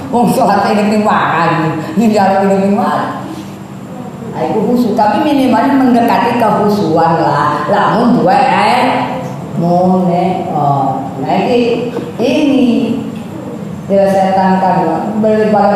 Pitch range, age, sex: 185-240 Hz, 20-39, female